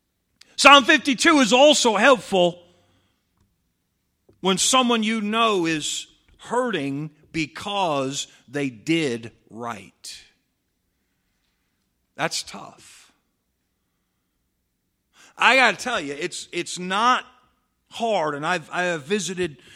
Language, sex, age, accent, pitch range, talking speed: English, male, 50-69, American, 120-185 Hz, 95 wpm